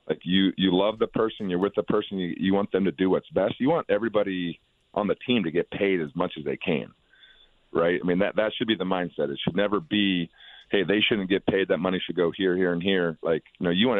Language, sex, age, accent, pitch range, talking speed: English, male, 40-59, American, 85-105 Hz, 265 wpm